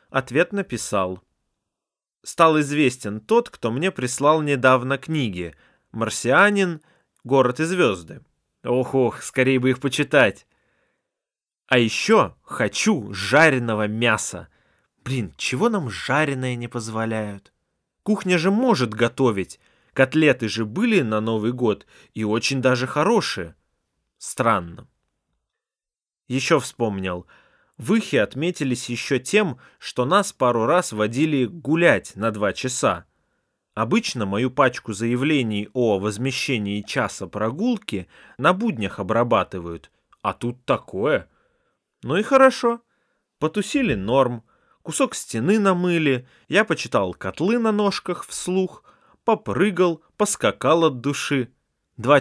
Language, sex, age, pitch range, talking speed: Russian, male, 20-39, 110-180 Hz, 105 wpm